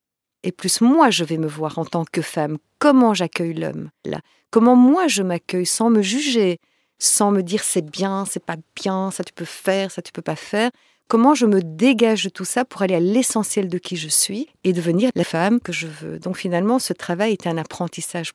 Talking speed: 220 wpm